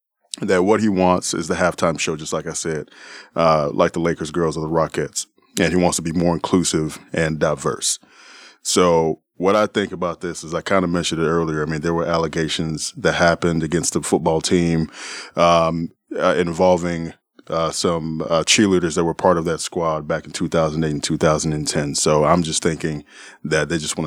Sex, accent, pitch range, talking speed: male, American, 80-90 Hz, 195 wpm